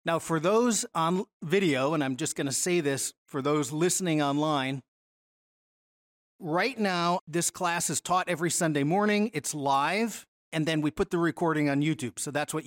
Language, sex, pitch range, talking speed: English, male, 140-180 Hz, 180 wpm